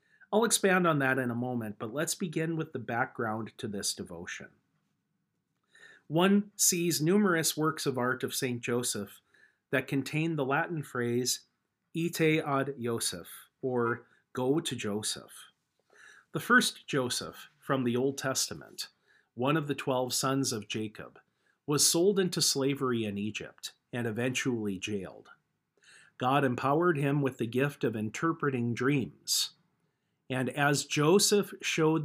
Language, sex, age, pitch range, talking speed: English, male, 40-59, 125-160 Hz, 135 wpm